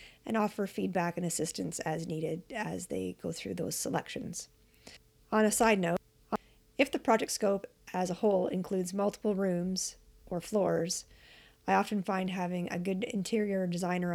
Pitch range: 170-210 Hz